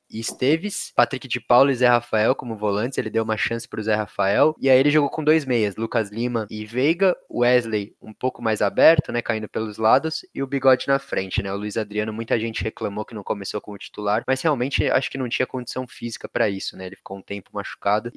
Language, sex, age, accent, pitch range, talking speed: Portuguese, male, 20-39, Brazilian, 105-135 Hz, 235 wpm